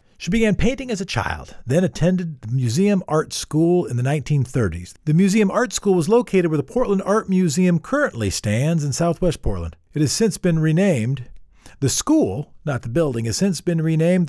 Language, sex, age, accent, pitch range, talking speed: English, male, 50-69, American, 125-180 Hz, 190 wpm